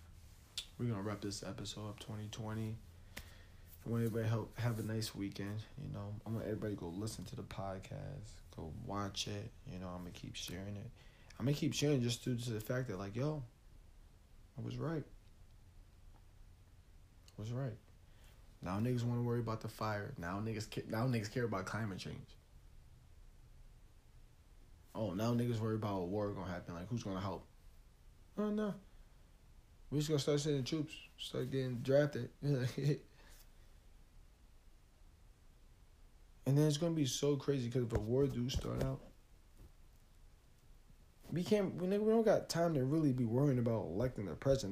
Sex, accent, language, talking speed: male, American, English, 165 wpm